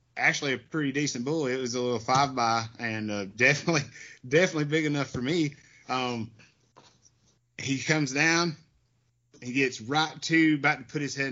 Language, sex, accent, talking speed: English, male, American, 170 wpm